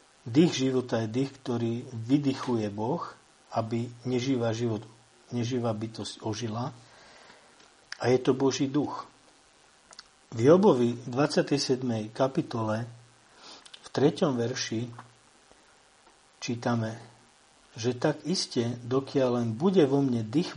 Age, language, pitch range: 50-69, Slovak, 115-135 Hz